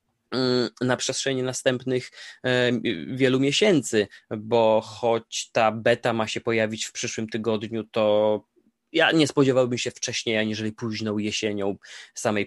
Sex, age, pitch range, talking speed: male, 20-39, 105-130 Hz, 120 wpm